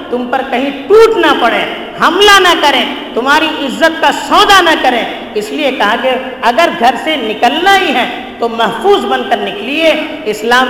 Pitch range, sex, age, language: 245-330 Hz, female, 50-69, Urdu